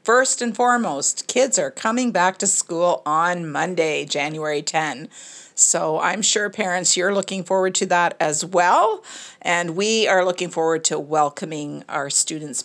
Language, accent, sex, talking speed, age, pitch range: English, American, female, 155 wpm, 50-69, 165-195 Hz